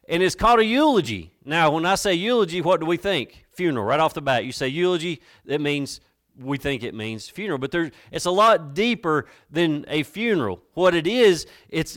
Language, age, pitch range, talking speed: English, 40-59, 155-200 Hz, 205 wpm